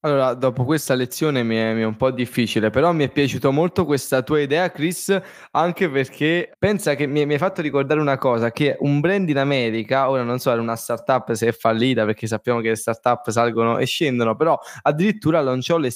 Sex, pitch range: male, 125-155 Hz